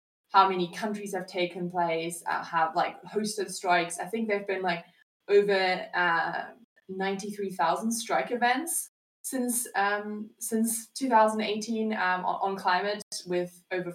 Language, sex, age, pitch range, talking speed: English, female, 20-39, 175-210 Hz, 145 wpm